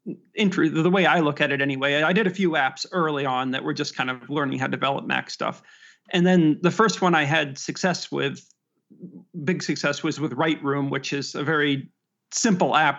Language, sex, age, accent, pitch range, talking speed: English, male, 40-59, American, 140-175 Hz, 210 wpm